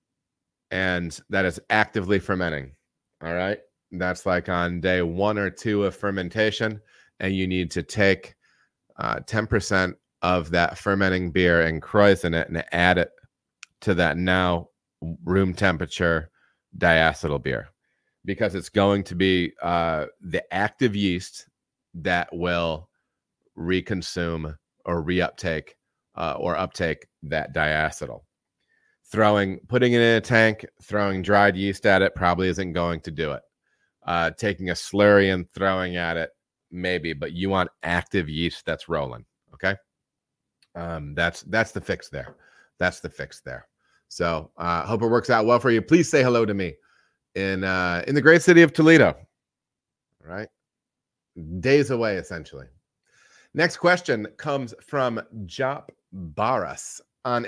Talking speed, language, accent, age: 145 wpm, English, American, 30-49